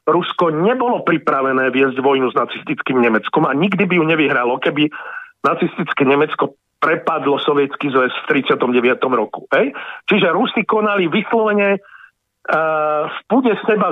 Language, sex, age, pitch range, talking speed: Slovak, male, 50-69, 155-245 Hz, 140 wpm